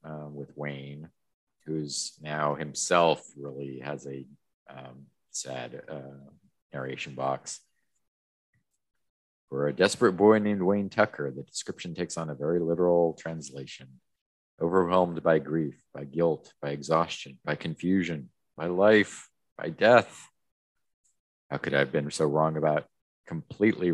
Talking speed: 130 wpm